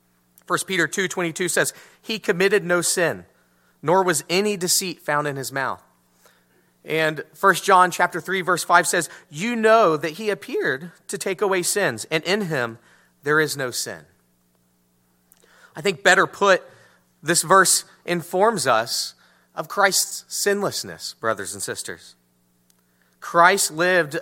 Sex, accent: male, American